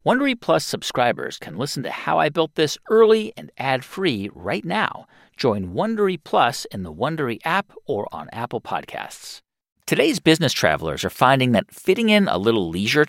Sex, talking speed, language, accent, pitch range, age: male, 170 wpm, English, American, 130-200 Hz, 40-59